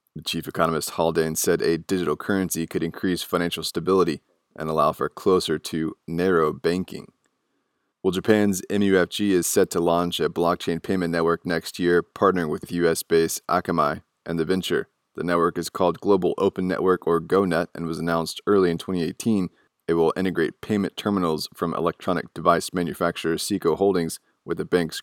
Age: 20-39